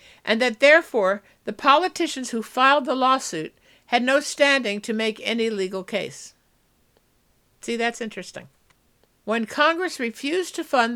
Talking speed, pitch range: 135 wpm, 195-265 Hz